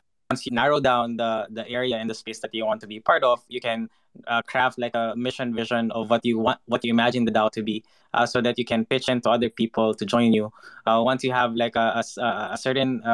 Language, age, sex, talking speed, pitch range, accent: English, 20-39, male, 260 wpm, 110-125 Hz, Filipino